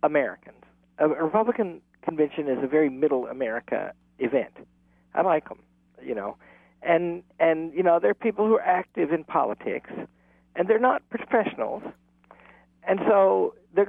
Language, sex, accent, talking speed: English, male, American, 145 wpm